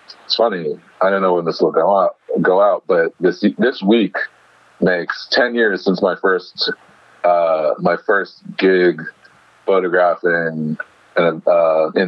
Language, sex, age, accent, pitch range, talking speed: English, male, 40-59, American, 90-105 Hz, 140 wpm